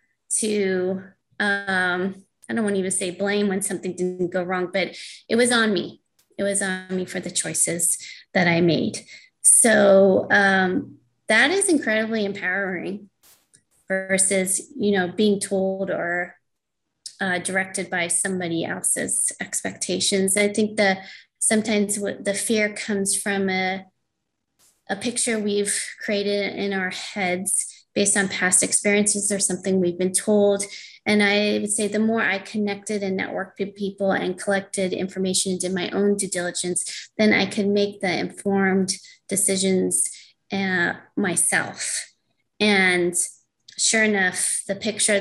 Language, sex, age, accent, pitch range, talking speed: English, female, 20-39, American, 185-205 Hz, 140 wpm